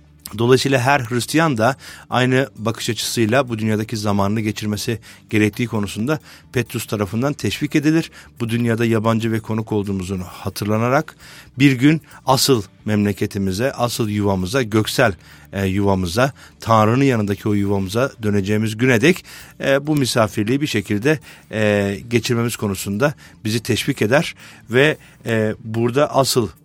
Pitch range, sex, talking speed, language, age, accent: 100-130 Hz, male, 125 wpm, Turkish, 50-69, native